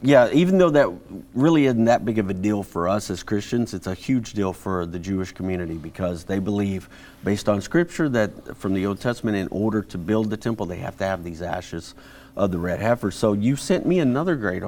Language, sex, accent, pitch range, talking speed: English, male, American, 95-125 Hz, 230 wpm